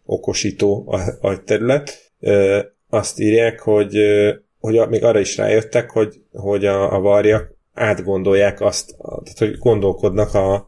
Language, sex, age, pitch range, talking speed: Hungarian, male, 30-49, 95-105 Hz, 120 wpm